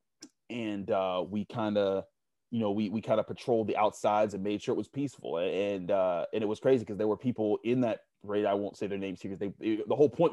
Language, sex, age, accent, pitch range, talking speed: English, male, 30-49, American, 100-125 Hz, 255 wpm